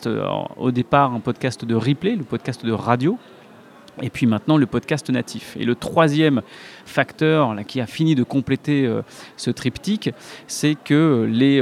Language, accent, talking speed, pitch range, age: French, French, 160 wpm, 125-160 Hz, 30-49